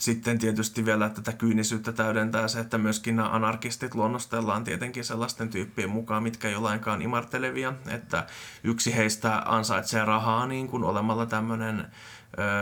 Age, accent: 20-39, native